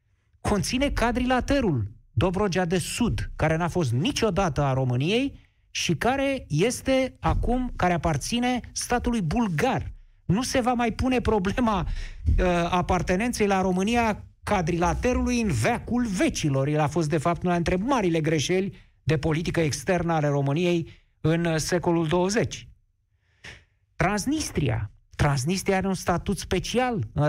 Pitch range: 130-195 Hz